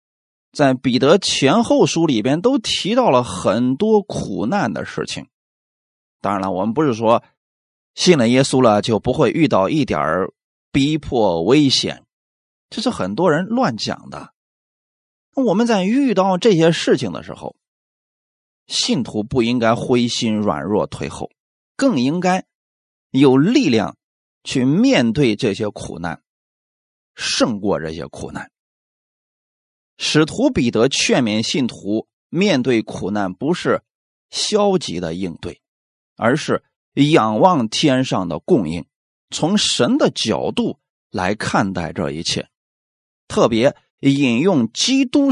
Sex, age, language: male, 30-49, Chinese